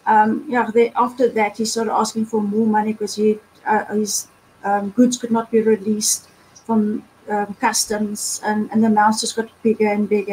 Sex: female